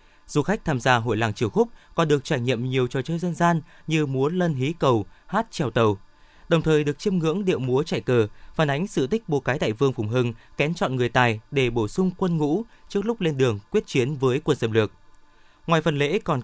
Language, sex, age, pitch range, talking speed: Vietnamese, male, 20-39, 100-145 Hz, 245 wpm